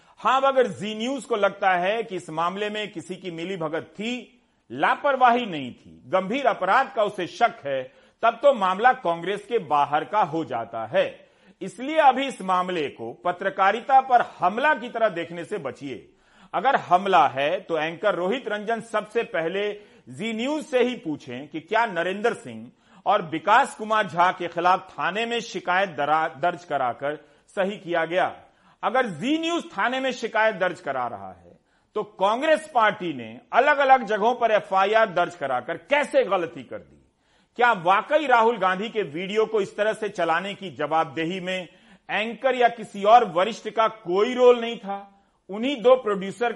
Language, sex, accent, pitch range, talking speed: Hindi, male, native, 175-235 Hz, 170 wpm